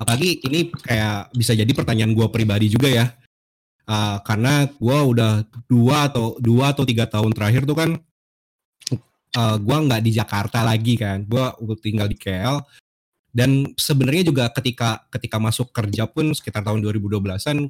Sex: male